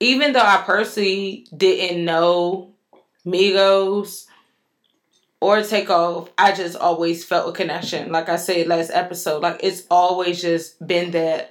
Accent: American